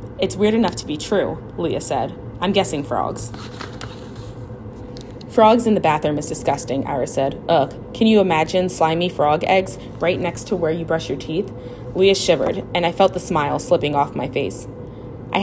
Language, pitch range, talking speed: English, 125-180 Hz, 180 wpm